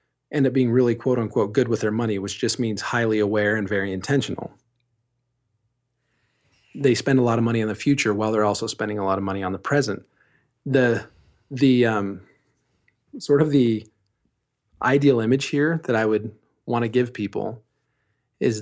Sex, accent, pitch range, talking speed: male, American, 105-130 Hz, 175 wpm